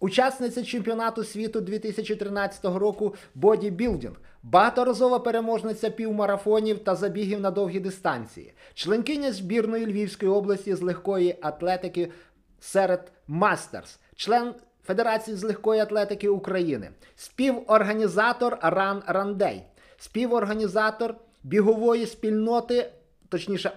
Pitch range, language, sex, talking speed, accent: 195-230 Hz, Ukrainian, male, 95 wpm, native